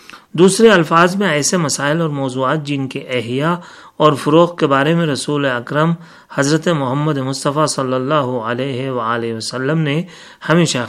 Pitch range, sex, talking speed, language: 125-165 Hz, male, 150 wpm, Urdu